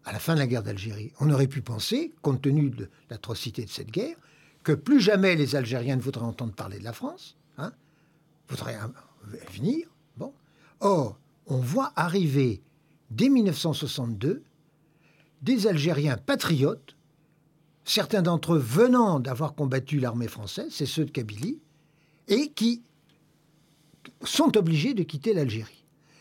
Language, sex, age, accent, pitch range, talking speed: French, male, 60-79, French, 140-175 Hz, 145 wpm